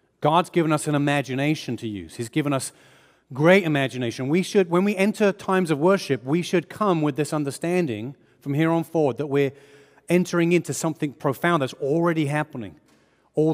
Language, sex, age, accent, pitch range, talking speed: English, male, 30-49, British, 135-175 Hz, 175 wpm